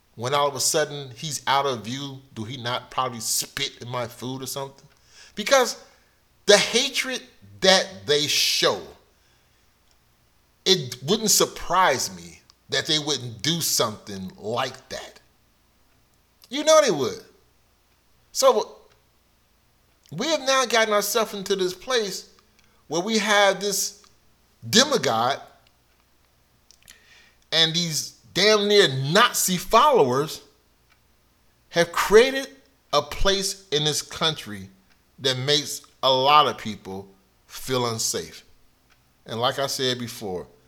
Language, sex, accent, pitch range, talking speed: English, male, American, 115-195 Hz, 120 wpm